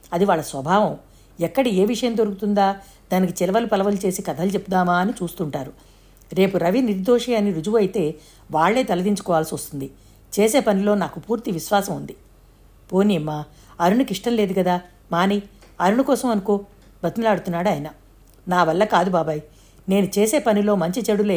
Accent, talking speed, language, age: native, 135 wpm, Telugu, 50-69